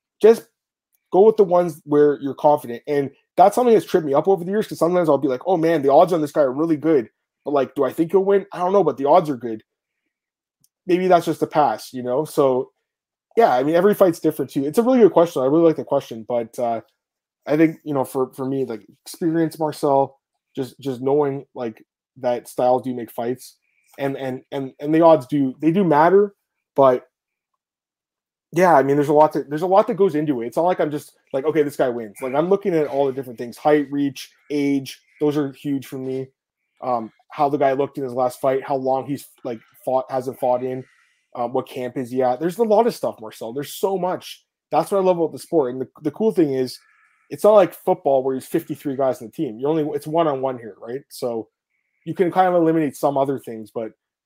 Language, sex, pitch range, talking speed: English, male, 130-165 Hz, 240 wpm